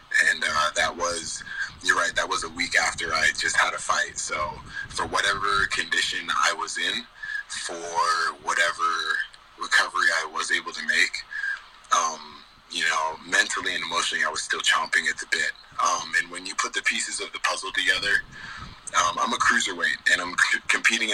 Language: English